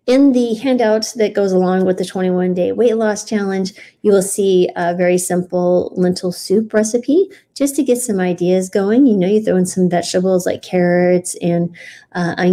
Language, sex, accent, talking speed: English, female, American, 180 wpm